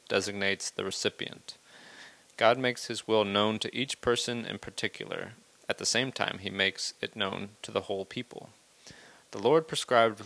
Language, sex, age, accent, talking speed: English, male, 40-59, American, 165 wpm